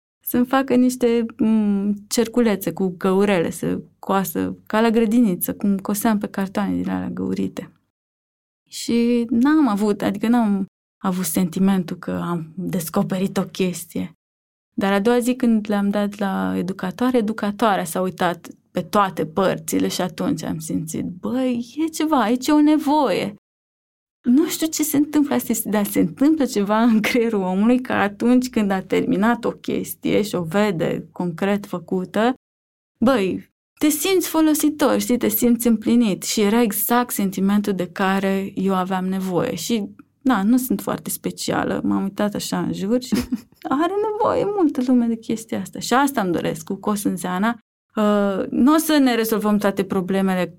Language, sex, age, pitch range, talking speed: Romanian, female, 20-39, 190-245 Hz, 155 wpm